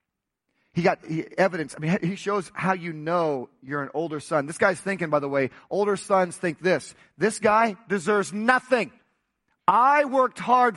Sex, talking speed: male, 175 wpm